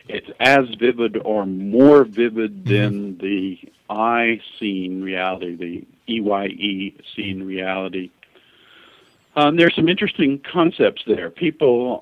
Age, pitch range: 50-69, 100-120 Hz